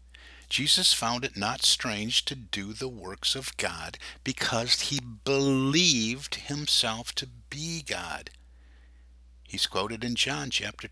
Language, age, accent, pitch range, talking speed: English, 50-69, American, 95-120 Hz, 125 wpm